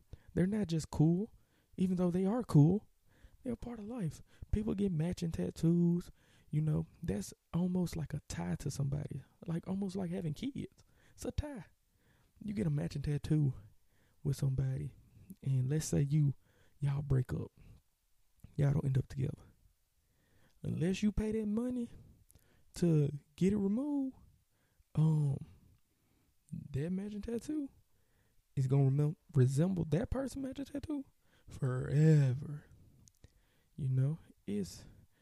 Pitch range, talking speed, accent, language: 130-180 Hz, 135 wpm, American, English